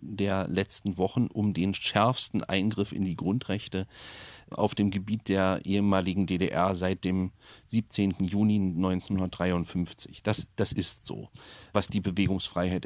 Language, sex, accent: German, male, German